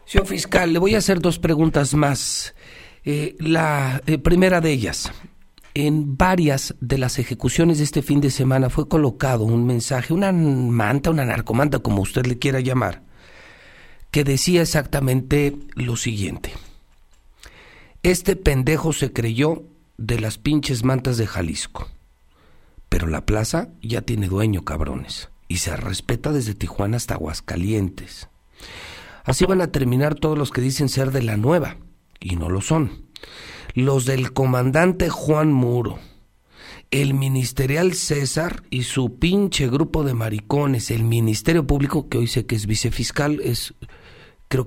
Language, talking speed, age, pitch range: Spanish, 145 wpm, 50-69, 115-155 Hz